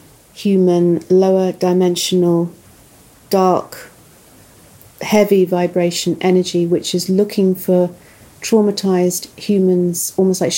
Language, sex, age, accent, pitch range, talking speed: English, female, 40-59, British, 175-190 Hz, 80 wpm